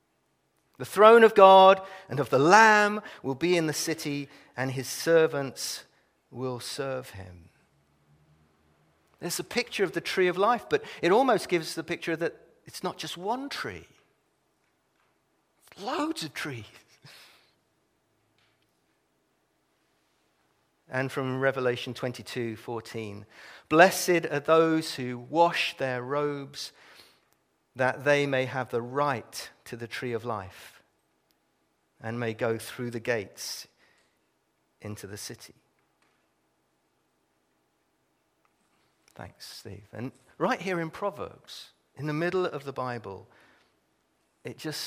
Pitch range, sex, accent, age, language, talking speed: 110-170 Hz, male, British, 40-59, English, 120 wpm